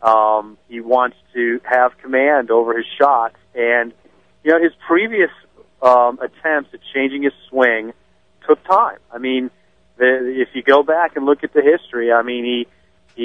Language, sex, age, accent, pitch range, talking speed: English, male, 40-59, American, 125-145 Hz, 170 wpm